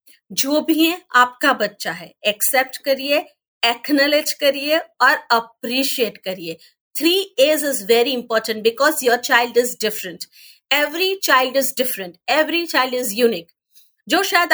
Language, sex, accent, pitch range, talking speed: Hindi, female, native, 255-330 Hz, 135 wpm